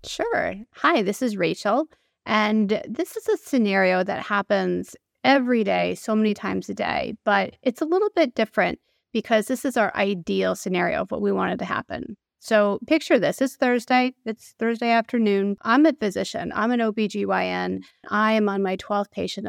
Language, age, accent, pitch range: English, 30-49, American, 190-220 Hz